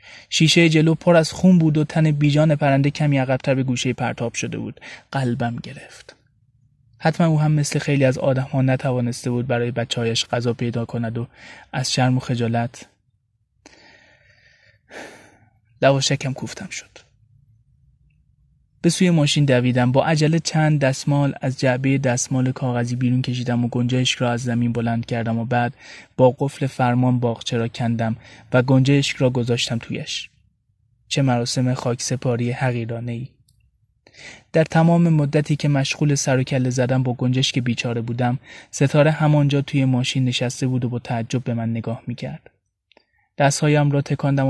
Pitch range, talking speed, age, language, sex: 120-140 Hz, 150 wpm, 20-39, Persian, male